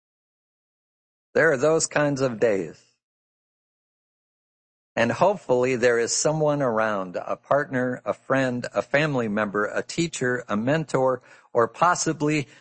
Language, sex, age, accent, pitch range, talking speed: English, male, 60-79, American, 125-165 Hz, 120 wpm